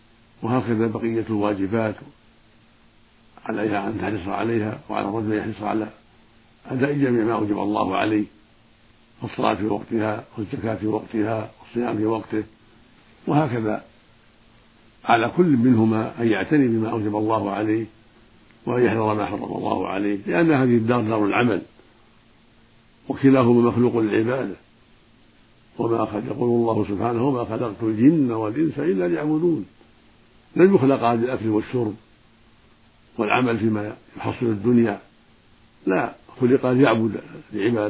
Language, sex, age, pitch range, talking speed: Arabic, male, 60-79, 110-120 Hz, 120 wpm